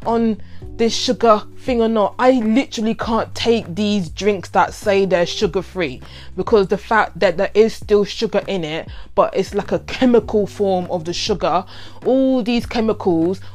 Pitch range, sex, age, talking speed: 175-225 Hz, female, 20-39, 170 wpm